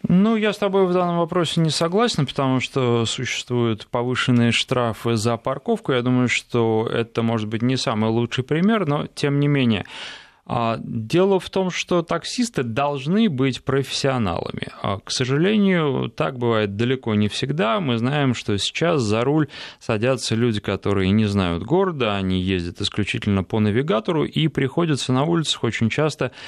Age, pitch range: 20-39, 110-150 Hz